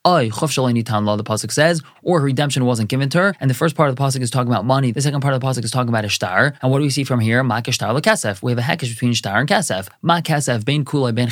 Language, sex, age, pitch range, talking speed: English, male, 20-39, 120-155 Hz, 280 wpm